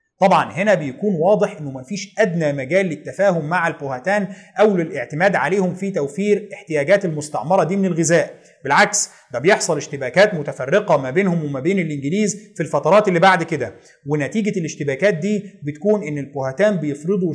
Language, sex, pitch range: Arabic, male, 150-205 Hz